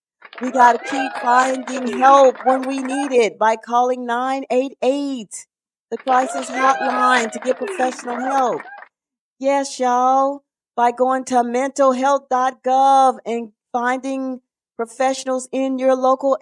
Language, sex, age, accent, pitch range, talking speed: English, female, 40-59, American, 250-290 Hz, 115 wpm